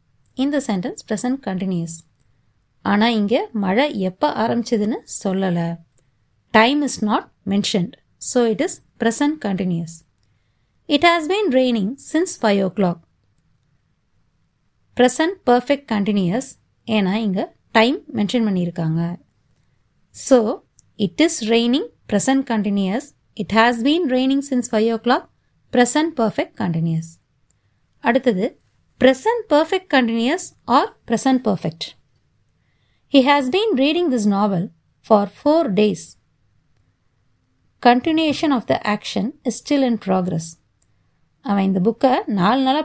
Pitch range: 185-270 Hz